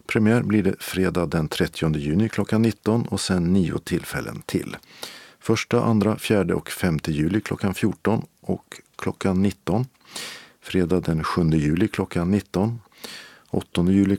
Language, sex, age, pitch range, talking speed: Swedish, male, 50-69, 90-110 Hz, 140 wpm